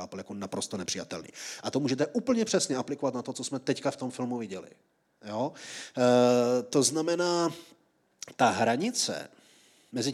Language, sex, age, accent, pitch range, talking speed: Czech, male, 30-49, native, 115-145 Hz, 150 wpm